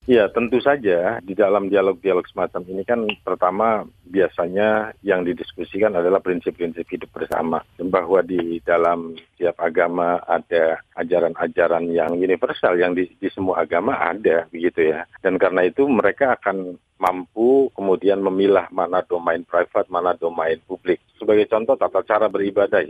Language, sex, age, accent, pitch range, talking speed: Indonesian, male, 40-59, native, 85-105 Hz, 140 wpm